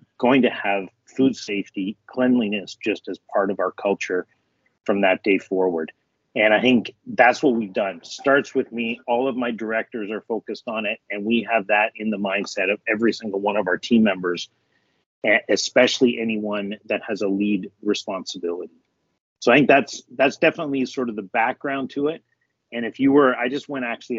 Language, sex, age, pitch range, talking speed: English, male, 40-59, 100-120 Hz, 190 wpm